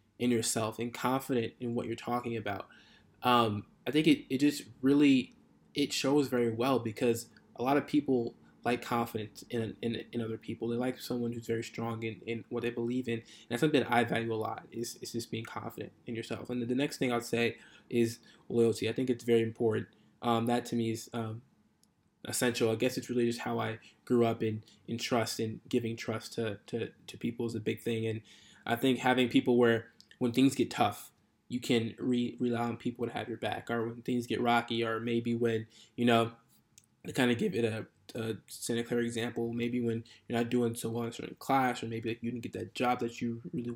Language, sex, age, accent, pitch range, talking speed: English, male, 20-39, American, 115-120 Hz, 225 wpm